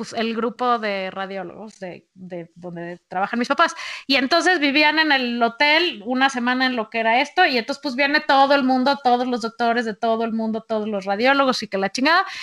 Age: 20-39